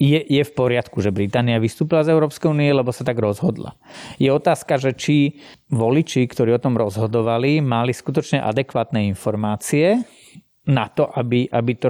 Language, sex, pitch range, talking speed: Slovak, male, 120-150 Hz, 160 wpm